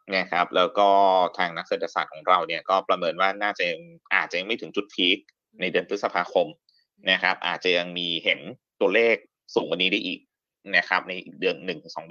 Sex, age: male, 20-39